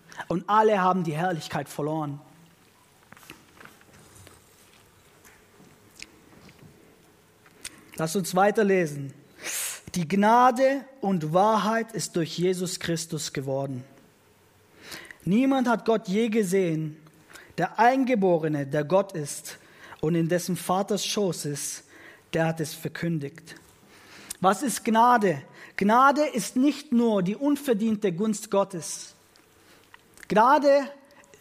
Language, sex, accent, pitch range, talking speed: German, male, German, 170-240 Hz, 95 wpm